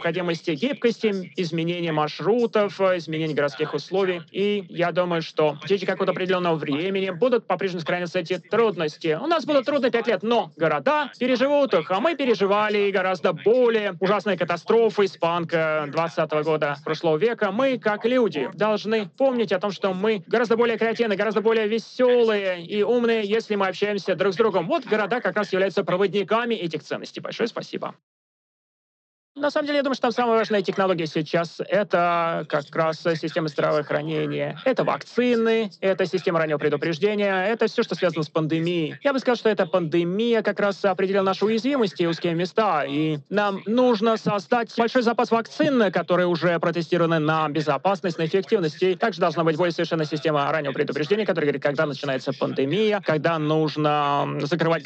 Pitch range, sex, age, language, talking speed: 165-225 Hz, male, 30-49, Russian, 165 wpm